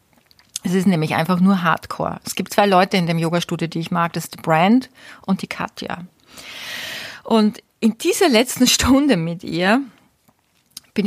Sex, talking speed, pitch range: female, 170 wpm, 180-225 Hz